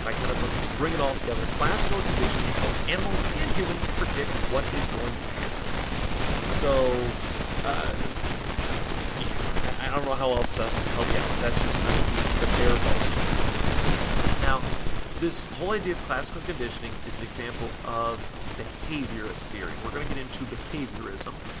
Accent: American